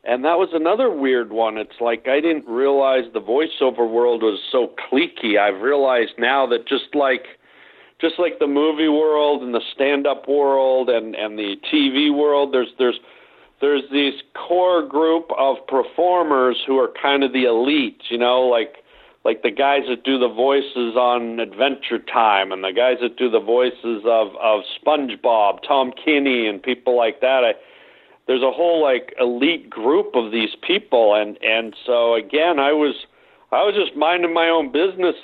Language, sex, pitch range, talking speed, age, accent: English, male, 120-155 Hz, 175 wpm, 50-69, American